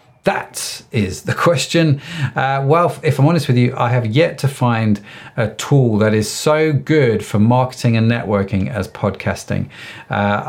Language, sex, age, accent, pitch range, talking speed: English, male, 40-59, British, 110-150 Hz, 165 wpm